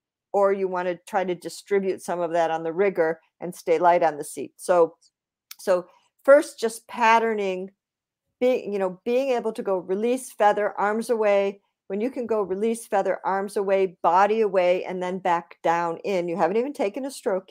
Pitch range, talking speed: 180-230 Hz, 190 wpm